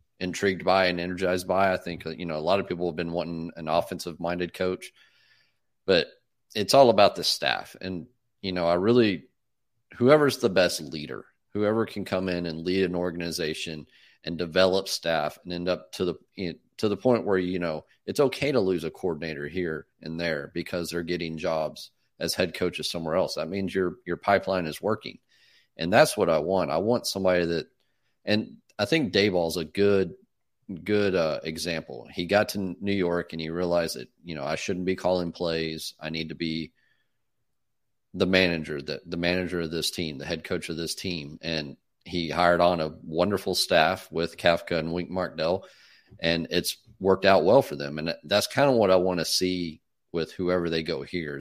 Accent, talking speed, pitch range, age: American, 195 wpm, 85-95 Hz, 40-59